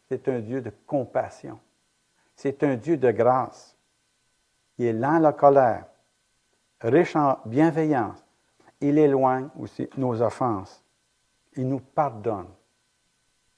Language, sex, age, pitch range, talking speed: French, male, 60-79, 125-165 Hz, 120 wpm